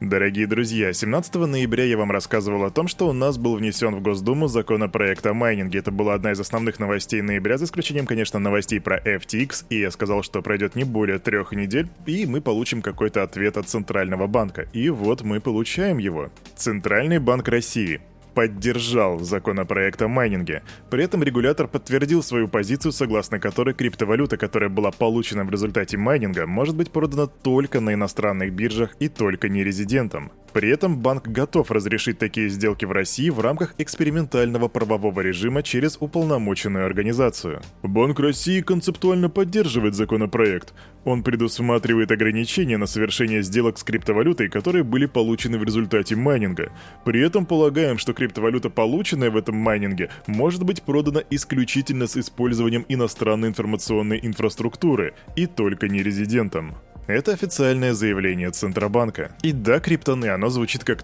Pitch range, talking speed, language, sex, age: 105-135 Hz, 150 wpm, Russian, male, 20-39